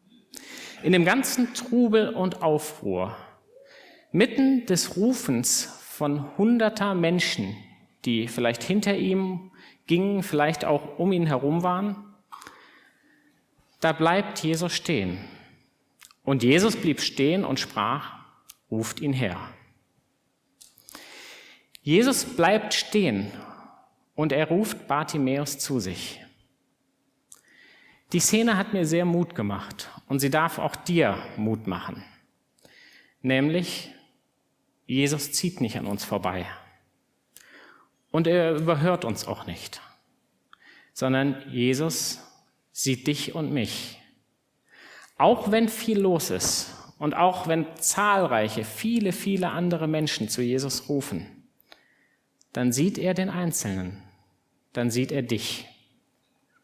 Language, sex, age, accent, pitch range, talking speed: German, male, 50-69, German, 130-190 Hz, 110 wpm